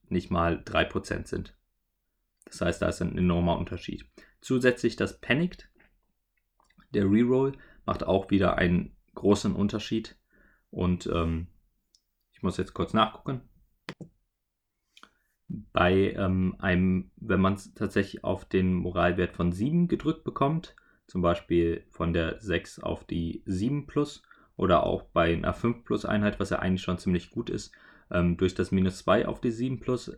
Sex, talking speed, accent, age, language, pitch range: male, 140 wpm, German, 30-49, German, 90-105 Hz